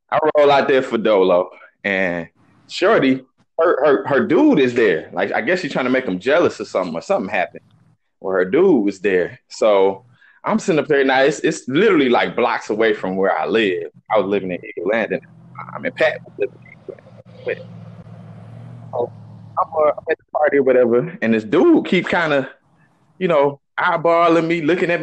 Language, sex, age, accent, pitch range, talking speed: English, male, 20-39, American, 110-180 Hz, 180 wpm